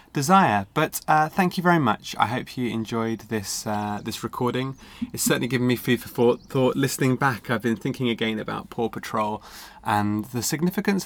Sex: male